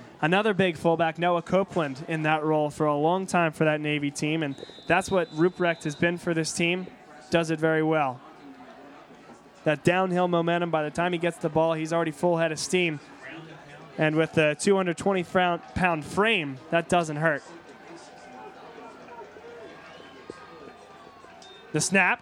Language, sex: English, male